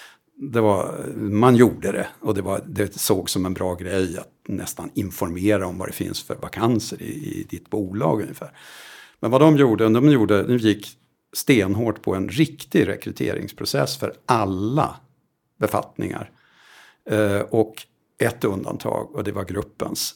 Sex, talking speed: male, 155 wpm